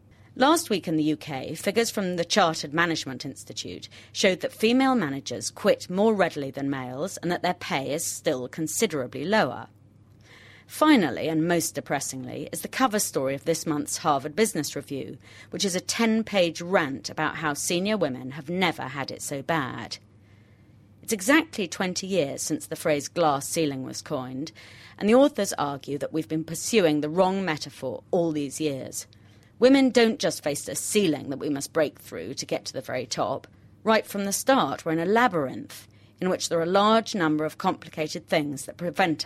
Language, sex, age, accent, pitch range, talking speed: English, female, 40-59, British, 135-190 Hz, 180 wpm